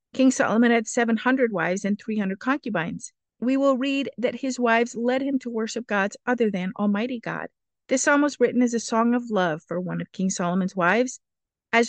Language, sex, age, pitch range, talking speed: English, female, 50-69, 195-245 Hz, 195 wpm